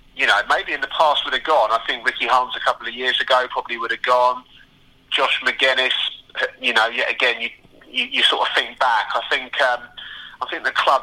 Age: 30-49